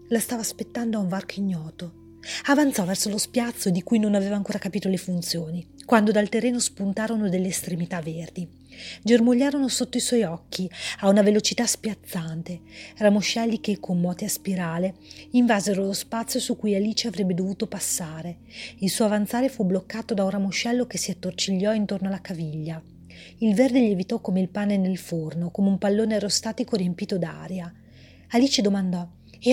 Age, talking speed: 30-49, 165 wpm